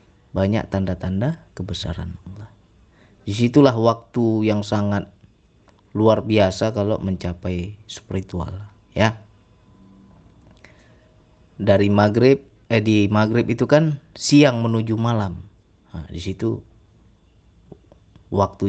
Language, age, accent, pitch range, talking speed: Indonesian, 30-49, native, 95-115 Hz, 85 wpm